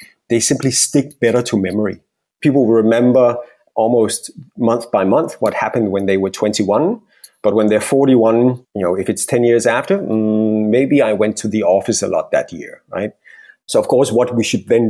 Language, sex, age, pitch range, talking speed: English, male, 30-49, 110-130 Hz, 195 wpm